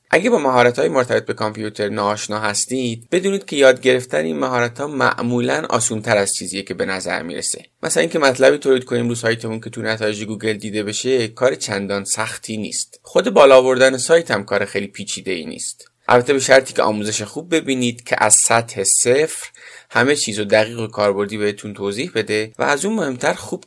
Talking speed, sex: 190 wpm, male